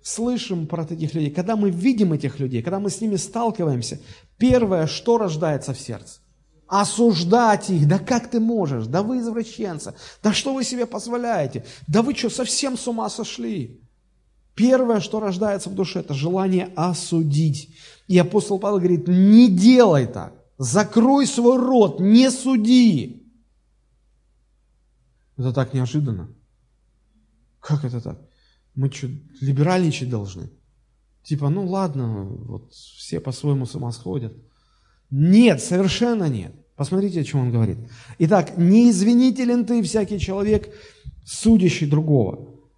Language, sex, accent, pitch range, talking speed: Russian, male, native, 135-215 Hz, 130 wpm